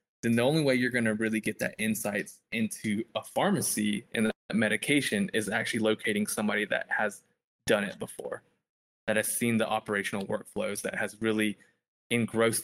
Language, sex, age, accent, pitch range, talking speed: English, male, 20-39, American, 105-125 Hz, 170 wpm